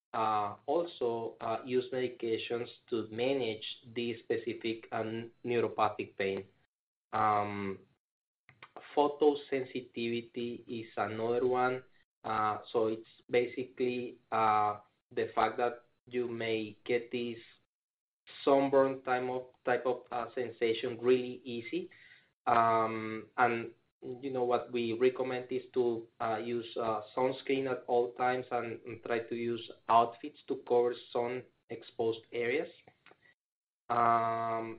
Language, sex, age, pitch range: English, male, 20-39, 115-125 Hz